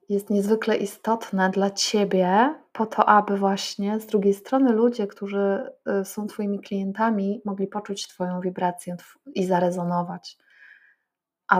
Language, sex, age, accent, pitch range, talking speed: Polish, female, 20-39, native, 190-220 Hz, 125 wpm